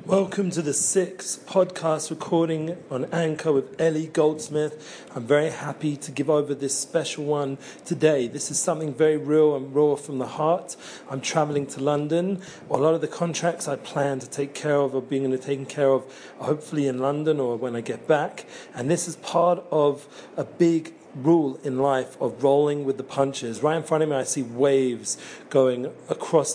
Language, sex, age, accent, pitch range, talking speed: English, male, 40-59, British, 135-160 Hz, 190 wpm